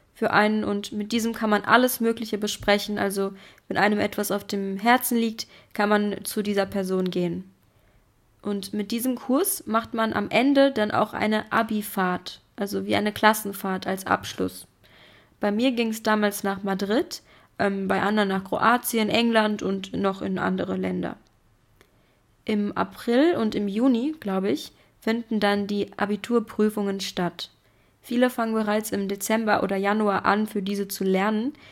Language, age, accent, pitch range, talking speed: German, 20-39, German, 195-225 Hz, 160 wpm